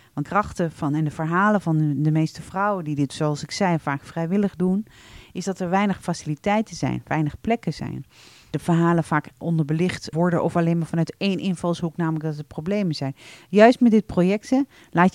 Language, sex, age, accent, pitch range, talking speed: Dutch, female, 40-59, Dutch, 155-185 Hz, 185 wpm